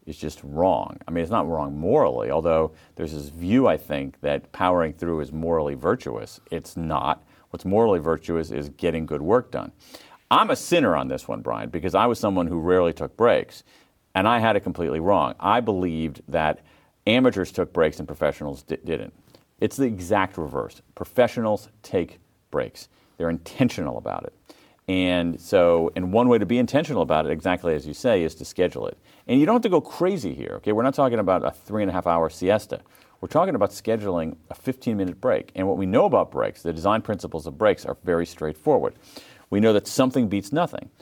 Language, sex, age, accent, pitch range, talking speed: English, male, 40-59, American, 80-105 Hz, 195 wpm